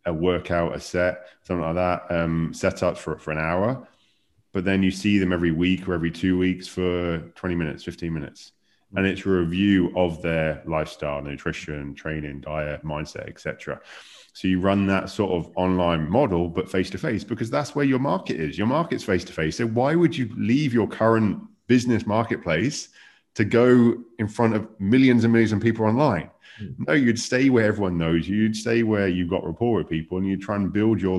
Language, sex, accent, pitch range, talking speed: English, male, British, 90-110 Hz, 200 wpm